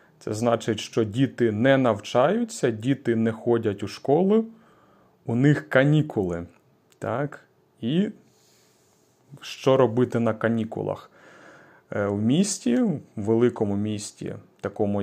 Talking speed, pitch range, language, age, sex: 105 wpm, 110-150 Hz, Ukrainian, 30-49, male